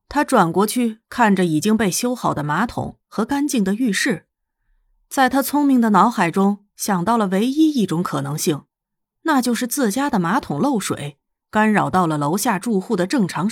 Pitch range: 190-275 Hz